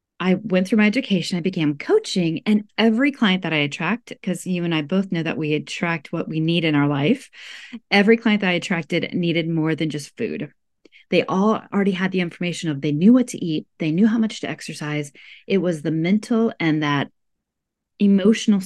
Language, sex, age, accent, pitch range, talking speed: English, female, 30-49, American, 165-225 Hz, 205 wpm